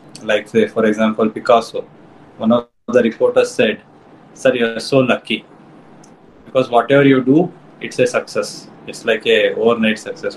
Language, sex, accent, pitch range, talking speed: English, male, Indian, 130-180 Hz, 155 wpm